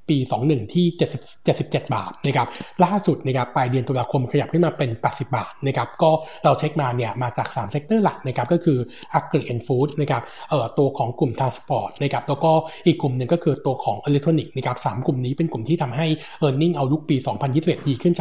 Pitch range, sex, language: 130-160 Hz, male, Thai